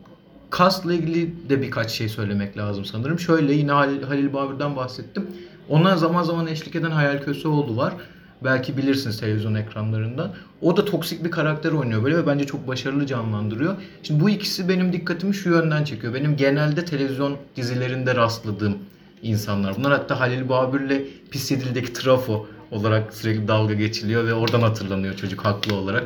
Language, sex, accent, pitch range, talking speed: Turkish, male, native, 110-155 Hz, 160 wpm